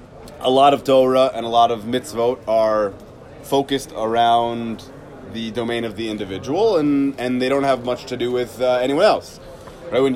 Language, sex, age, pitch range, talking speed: English, male, 30-49, 120-155 Hz, 185 wpm